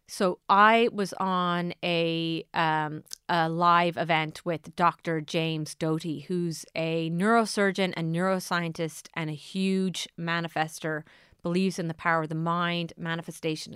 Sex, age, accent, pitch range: female, 30-49, American, 160-215 Hz